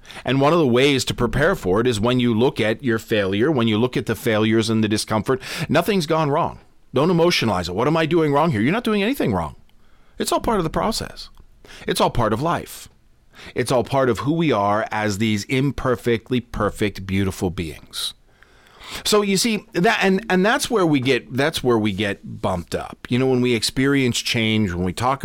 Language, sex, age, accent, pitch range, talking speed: English, male, 40-59, American, 110-140 Hz, 215 wpm